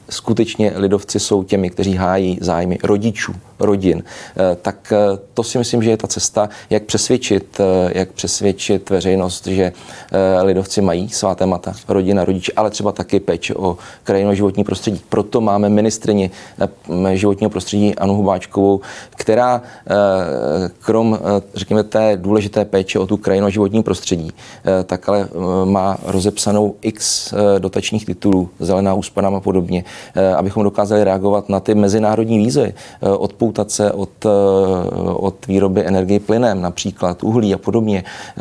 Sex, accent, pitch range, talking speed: male, native, 95-105 Hz, 130 wpm